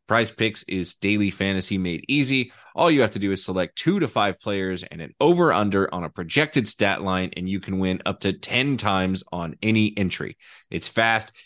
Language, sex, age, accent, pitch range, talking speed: English, male, 30-49, American, 95-125 Hz, 210 wpm